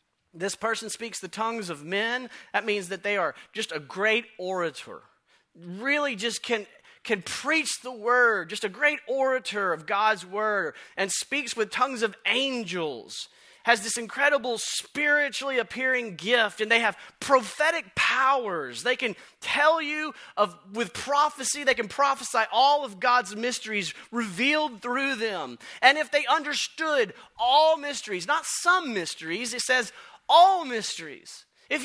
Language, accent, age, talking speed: English, American, 30-49, 145 wpm